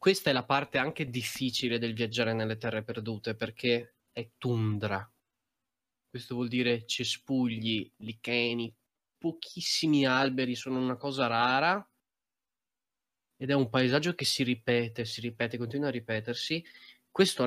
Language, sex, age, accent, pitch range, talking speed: Italian, male, 20-39, native, 120-140 Hz, 130 wpm